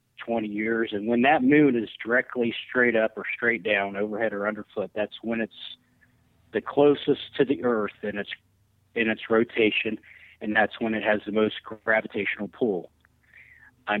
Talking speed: 165 wpm